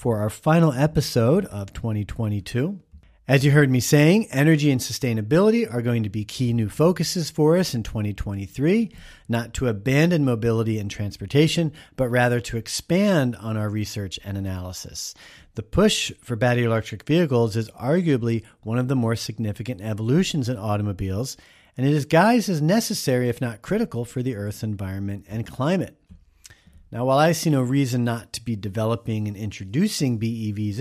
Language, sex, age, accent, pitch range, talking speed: English, male, 40-59, American, 105-140 Hz, 165 wpm